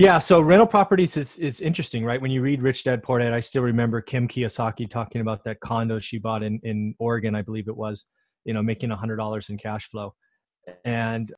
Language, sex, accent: English, male, American